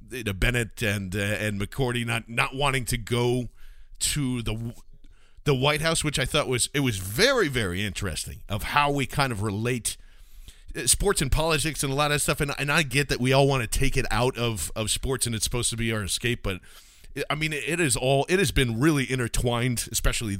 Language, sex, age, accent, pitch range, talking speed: English, male, 40-59, American, 115-145 Hz, 210 wpm